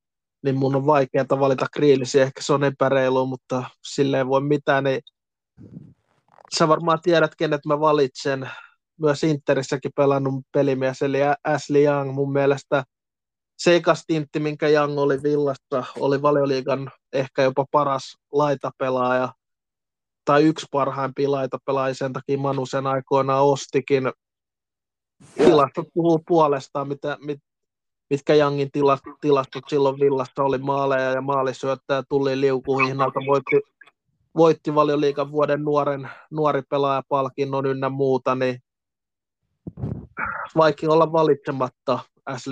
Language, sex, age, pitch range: Finnish, male, 20-39, 130-145 Hz